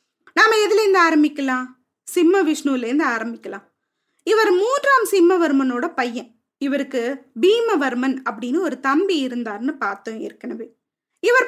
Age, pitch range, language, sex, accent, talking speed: 20-39, 270-365 Hz, Tamil, female, native, 95 wpm